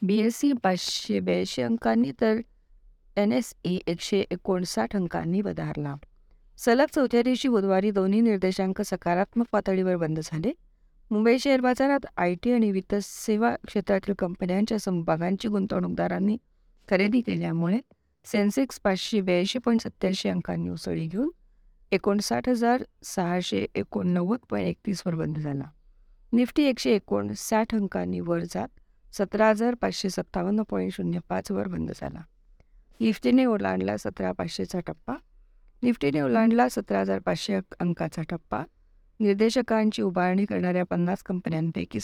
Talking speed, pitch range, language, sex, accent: 110 wpm, 175-225 Hz, Marathi, female, native